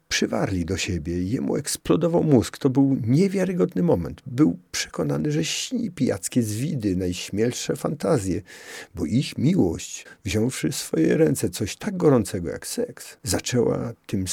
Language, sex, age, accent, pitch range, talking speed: Polish, male, 50-69, native, 90-130 Hz, 135 wpm